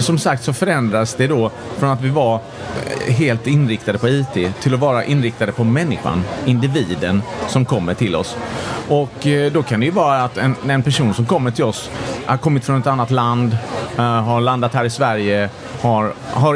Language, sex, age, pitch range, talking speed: Swedish, male, 30-49, 110-135 Hz, 185 wpm